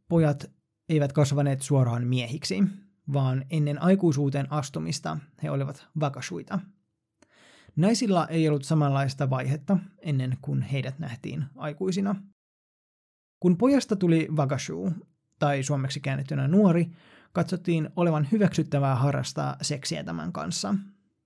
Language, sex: Finnish, male